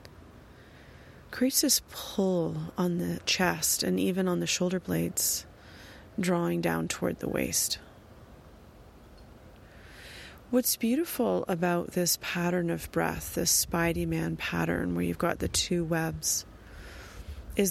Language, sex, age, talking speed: English, female, 30-49, 120 wpm